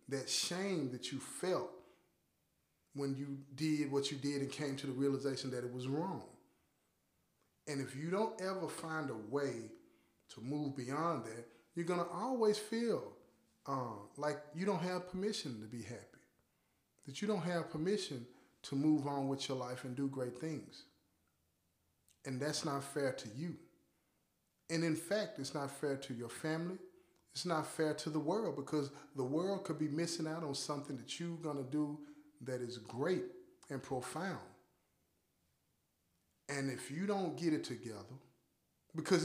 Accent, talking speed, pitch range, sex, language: American, 165 wpm, 130-165 Hz, male, English